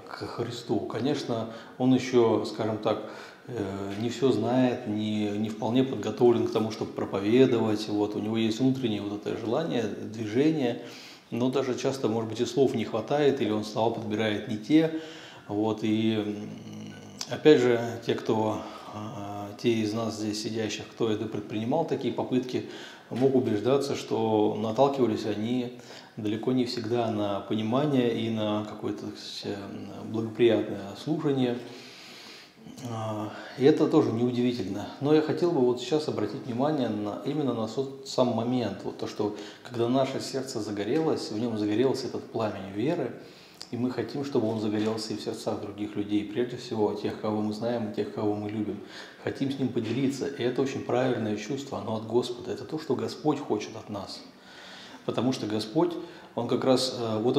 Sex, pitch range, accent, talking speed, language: male, 105-125 Hz, native, 160 wpm, Russian